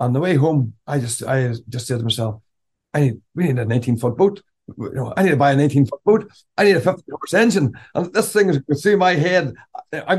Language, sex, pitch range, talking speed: English, male, 120-150 Hz, 255 wpm